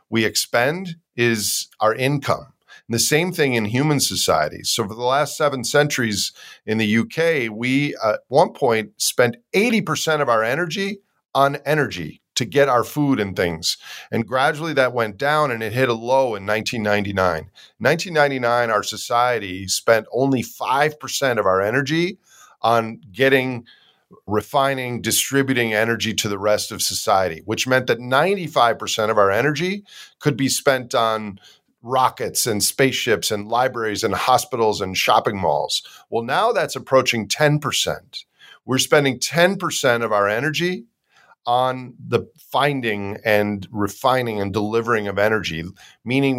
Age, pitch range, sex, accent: 50-69, 110-145 Hz, male, American